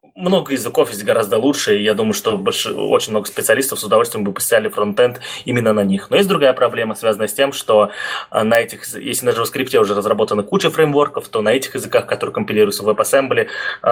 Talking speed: 200 wpm